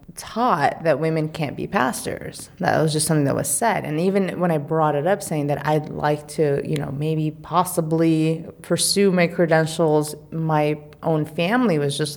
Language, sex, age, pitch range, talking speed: English, female, 30-49, 150-190 Hz, 180 wpm